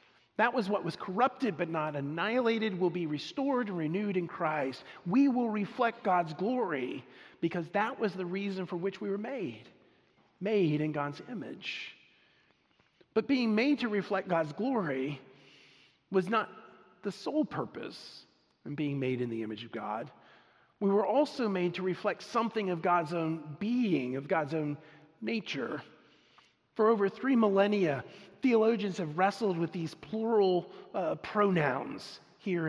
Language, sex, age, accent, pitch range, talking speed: English, male, 40-59, American, 150-210 Hz, 150 wpm